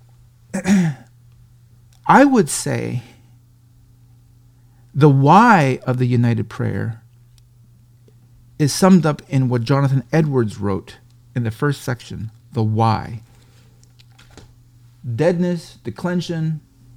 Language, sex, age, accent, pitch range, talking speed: English, male, 40-59, American, 120-155 Hz, 90 wpm